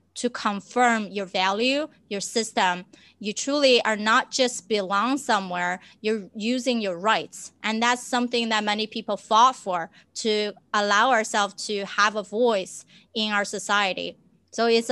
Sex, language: female, English